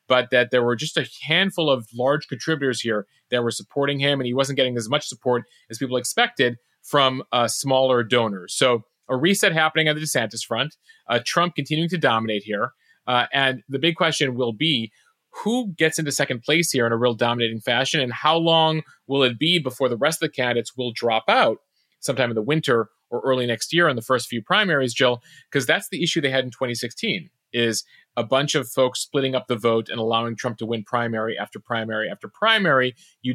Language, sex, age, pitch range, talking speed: English, male, 30-49, 120-155 Hz, 210 wpm